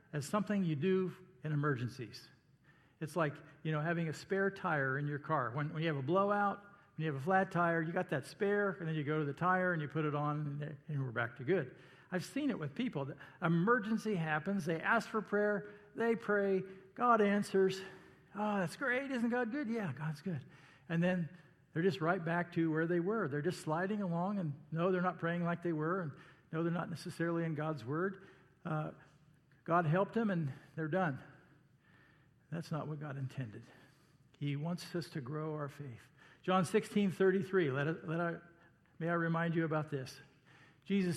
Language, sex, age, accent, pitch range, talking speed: English, male, 50-69, American, 150-195 Hz, 195 wpm